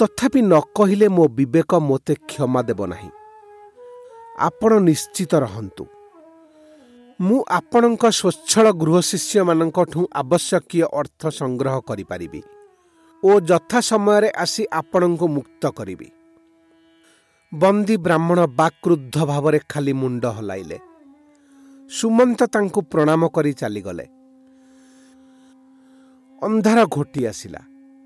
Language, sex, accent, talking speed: English, male, Indian, 80 wpm